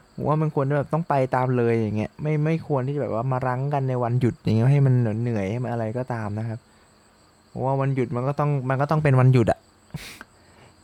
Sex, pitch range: male, 115-140 Hz